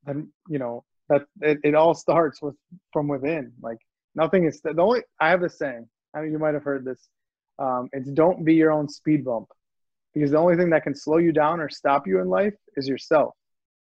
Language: English